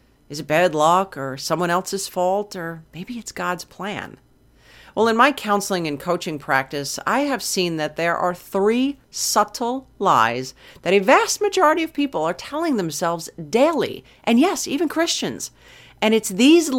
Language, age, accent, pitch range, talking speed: English, 40-59, American, 160-235 Hz, 165 wpm